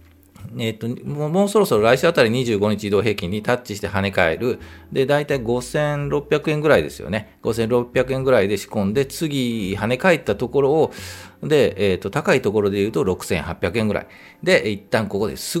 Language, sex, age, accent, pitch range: Japanese, male, 40-59, native, 95-130 Hz